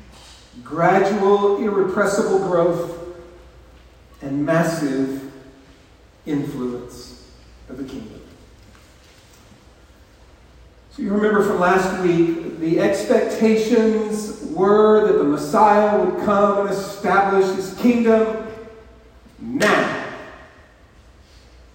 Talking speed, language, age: 75 wpm, English, 40-59